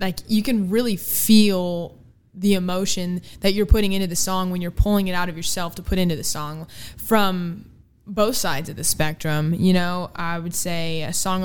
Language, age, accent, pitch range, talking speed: English, 20-39, American, 170-195 Hz, 200 wpm